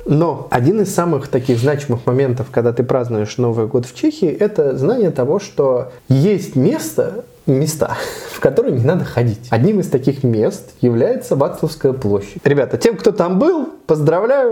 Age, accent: 20-39, native